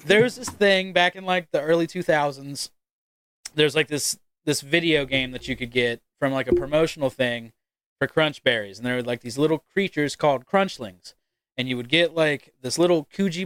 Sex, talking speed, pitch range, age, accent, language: male, 195 wpm, 140-185 Hz, 20-39, American, English